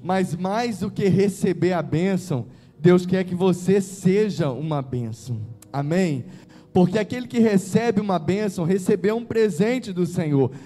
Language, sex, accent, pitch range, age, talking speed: Portuguese, male, Brazilian, 185-225 Hz, 20-39, 145 wpm